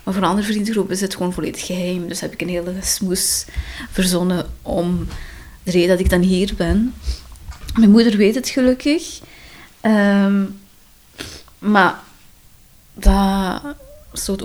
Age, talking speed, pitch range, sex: 20-39, 140 wpm, 180-210 Hz, female